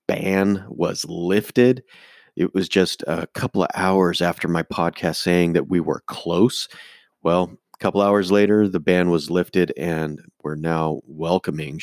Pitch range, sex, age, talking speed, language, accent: 85-110 Hz, male, 30-49, 155 wpm, English, American